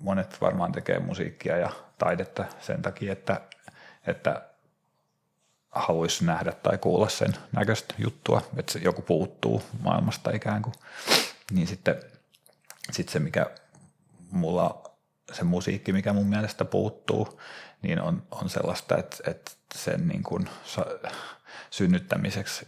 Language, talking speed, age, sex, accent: Finnish, 120 wpm, 30-49, male, native